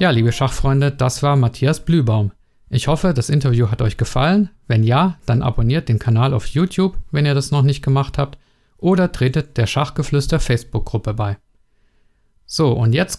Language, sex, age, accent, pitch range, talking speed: German, male, 50-69, German, 115-150 Hz, 170 wpm